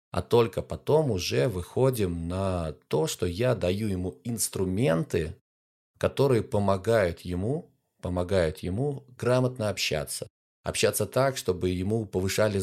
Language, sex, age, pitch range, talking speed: Russian, male, 30-49, 90-115 Hz, 110 wpm